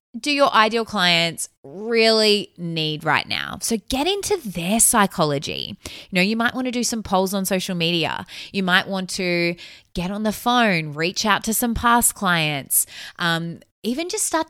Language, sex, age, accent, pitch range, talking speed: English, female, 20-39, Australian, 160-215 Hz, 180 wpm